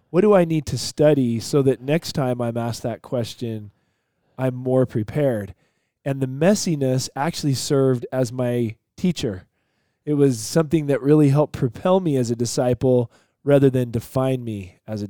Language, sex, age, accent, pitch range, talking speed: English, male, 20-39, American, 115-145 Hz, 165 wpm